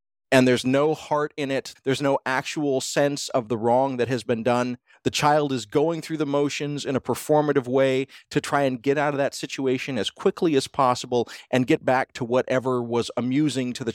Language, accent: English, American